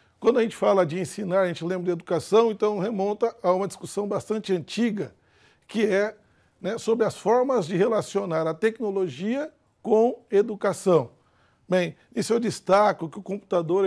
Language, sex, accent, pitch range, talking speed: Portuguese, male, Brazilian, 180-220 Hz, 160 wpm